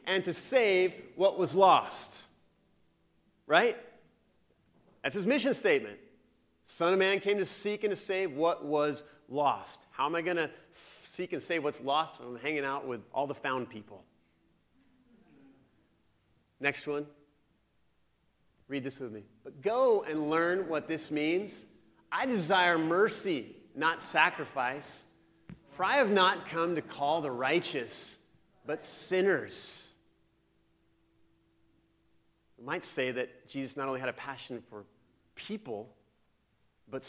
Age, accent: 40-59, American